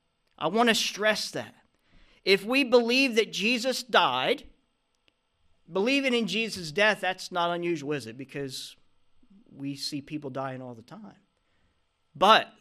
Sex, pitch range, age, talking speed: male, 150-245 Hz, 40-59, 140 wpm